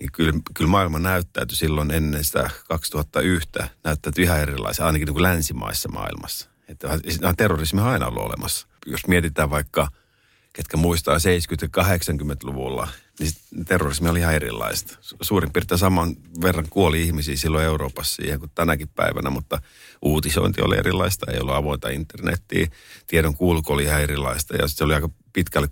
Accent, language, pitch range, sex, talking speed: native, Finnish, 70-85 Hz, male, 150 wpm